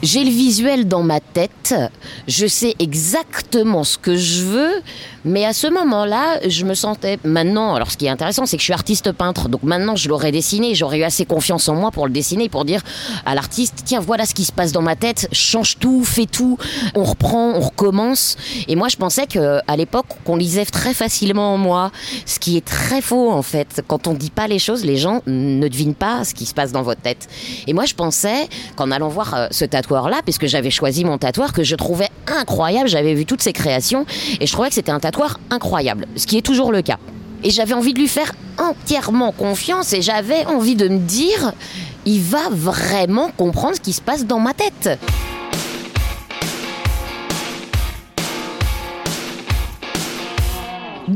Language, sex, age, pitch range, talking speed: French, female, 20-39, 150-235 Hz, 200 wpm